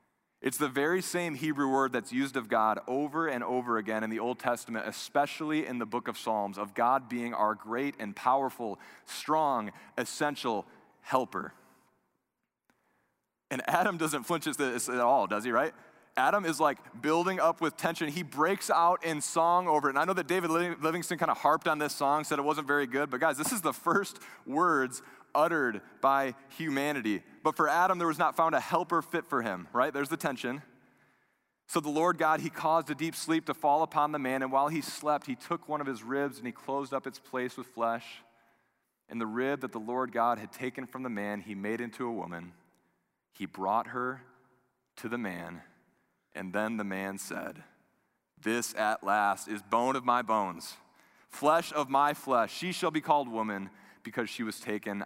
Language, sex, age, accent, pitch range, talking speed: English, male, 20-39, American, 115-155 Hz, 200 wpm